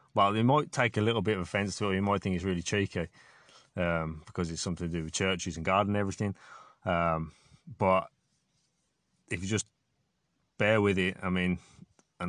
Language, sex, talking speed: English, male, 200 wpm